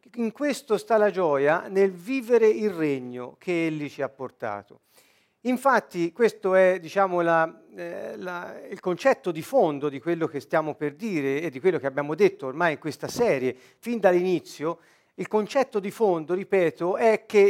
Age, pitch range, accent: 50-69, 155-210 Hz, native